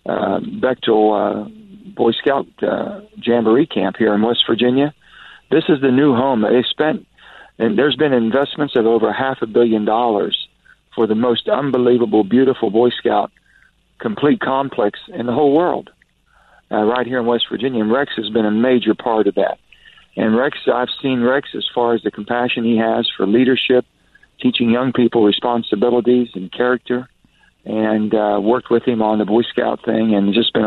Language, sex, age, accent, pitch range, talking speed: English, male, 50-69, American, 110-130 Hz, 180 wpm